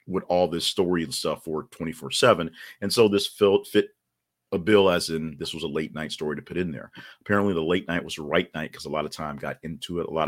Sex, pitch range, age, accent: male, 75-110 Hz, 40-59, American